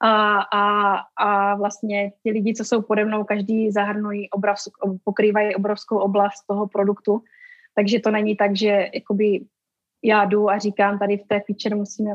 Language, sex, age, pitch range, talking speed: Slovak, female, 20-39, 205-230 Hz, 160 wpm